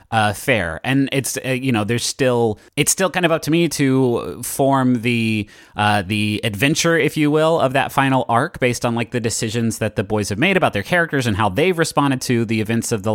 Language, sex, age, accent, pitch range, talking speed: English, male, 30-49, American, 110-140 Hz, 235 wpm